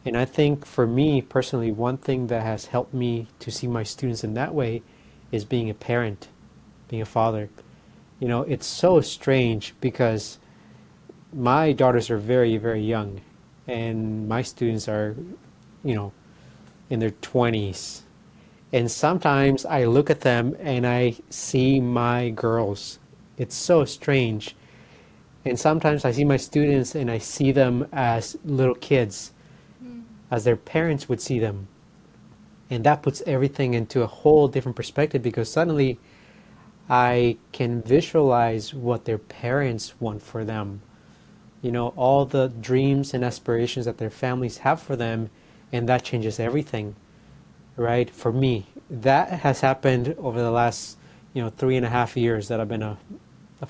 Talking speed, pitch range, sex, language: 155 wpm, 115-135 Hz, male, English